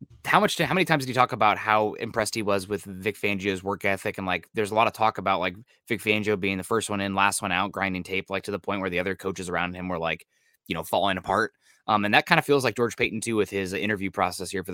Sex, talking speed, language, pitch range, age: male, 295 wpm, English, 95-110 Hz, 20-39